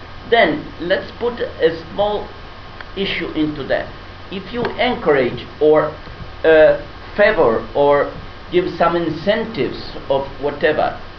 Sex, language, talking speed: male, Italian, 105 wpm